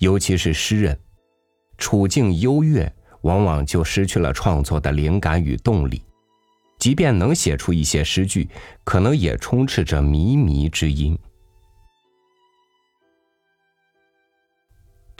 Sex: male